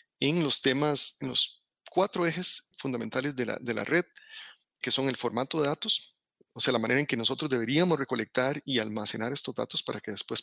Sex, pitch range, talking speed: male, 120-155 Hz, 200 wpm